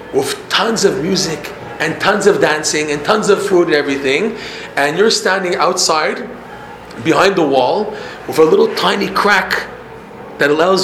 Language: English